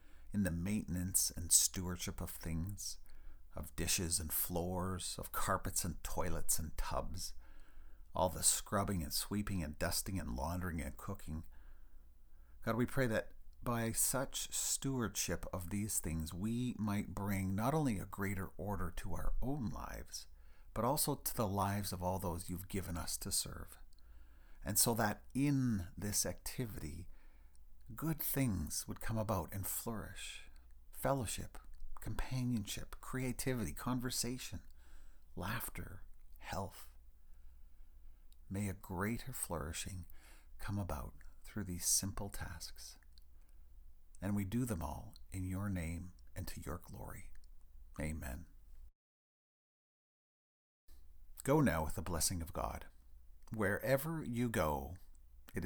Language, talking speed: English, 125 wpm